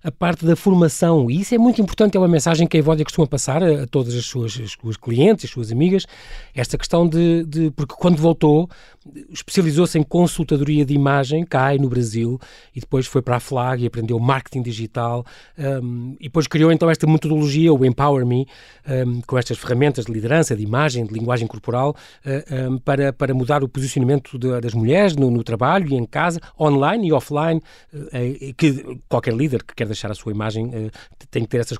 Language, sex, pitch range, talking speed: Portuguese, male, 125-165 Hz, 205 wpm